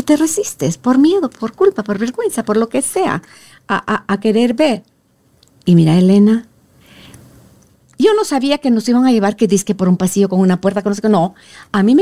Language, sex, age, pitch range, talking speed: Spanish, female, 40-59, 190-250 Hz, 215 wpm